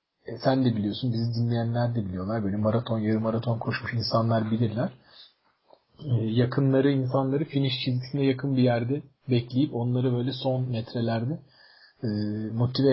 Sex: male